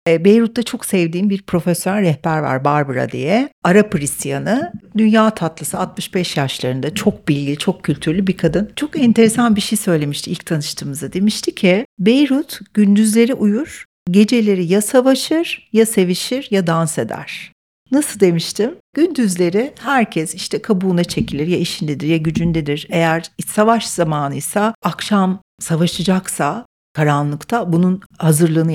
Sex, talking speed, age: female, 125 wpm, 60-79